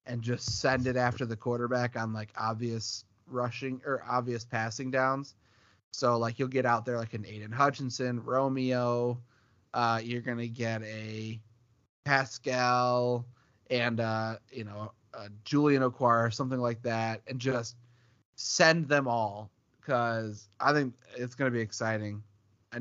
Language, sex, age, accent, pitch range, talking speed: English, male, 30-49, American, 115-140 Hz, 150 wpm